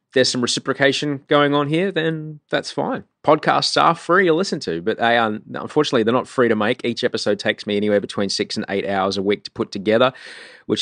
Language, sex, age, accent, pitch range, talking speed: English, male, 20-39, Australian, 90-130 Hz, 220 wpm